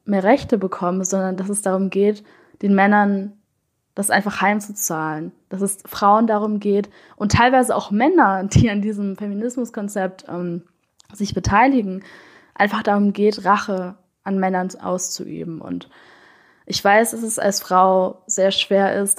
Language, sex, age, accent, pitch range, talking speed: German, female, 20-39, German, 185-220 Hz, 145 wpm